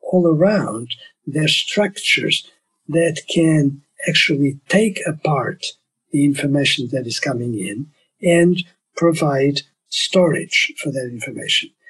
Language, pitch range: English, 140-170 Hz